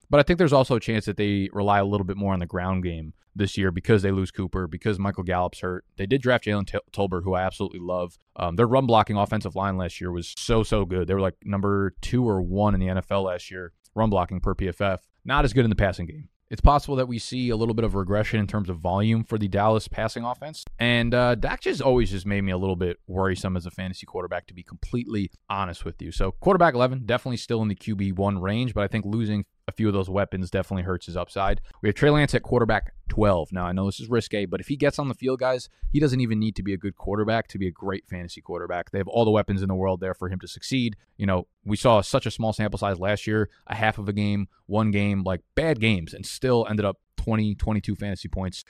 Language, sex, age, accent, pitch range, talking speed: English, male, 20-39, American, 95-110 Hz, 260 wpm